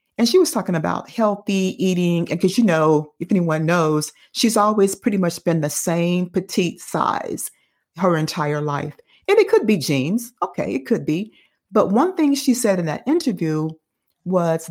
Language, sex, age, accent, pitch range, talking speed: English, female, 40-59, American, 175-245 Hz, 180 wpm